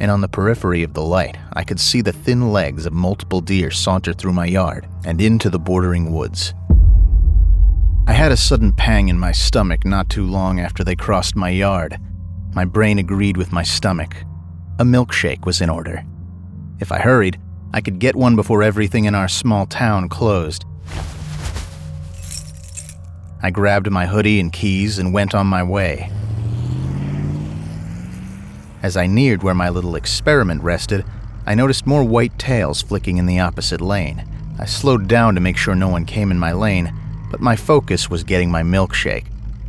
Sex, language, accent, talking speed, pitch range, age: male, English, American, 170 wpm, 85-105 Hz, 30-49